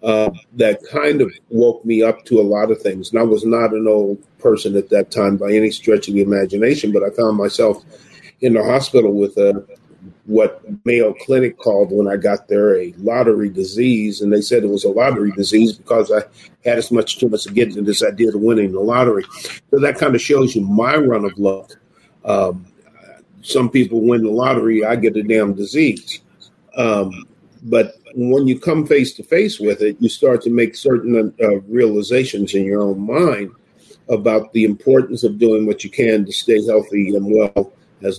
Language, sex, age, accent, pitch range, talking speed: English, male, 50-69, American, 100-115 Hz, 200 wpm